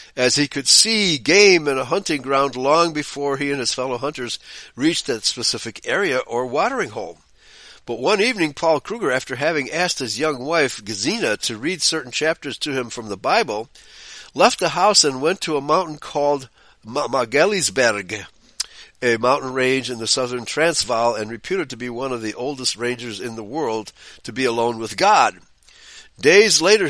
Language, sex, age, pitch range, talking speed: English, male, 60-79, 130-190 Hz, 180 wpm